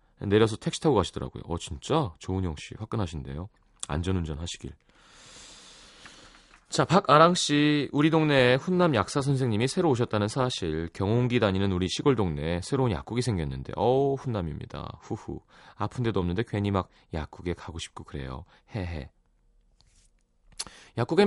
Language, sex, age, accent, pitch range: Korean, male, 30-49, native, 85-130 Hz